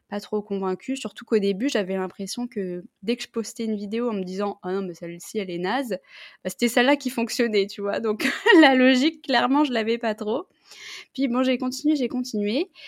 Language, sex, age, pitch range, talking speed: French, female, 20-39, 190-245 Hz, 230 wpm